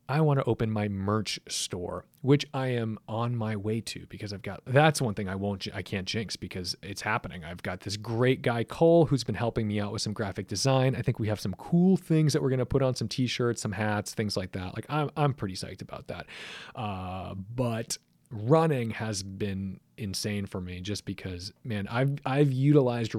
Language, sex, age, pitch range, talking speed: English, male, 30-49, 100-130 Hz, 215 wpm